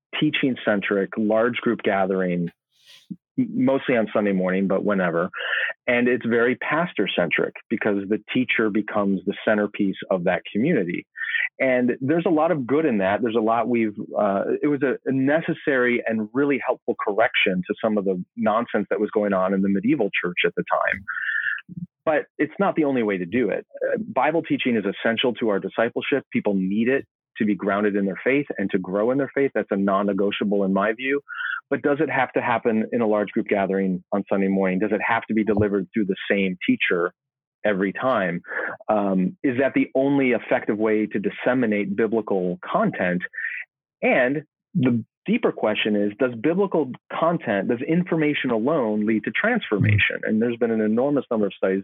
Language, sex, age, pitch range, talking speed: English, male, 30-49, 100-135 Hz, 185 wpm